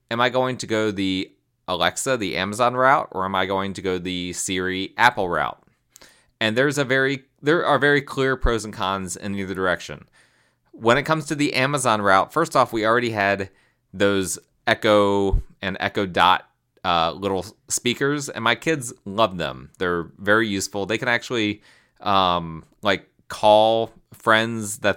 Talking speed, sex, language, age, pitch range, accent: 170 wpm, male, English, 30-49, 90-120 Hz, American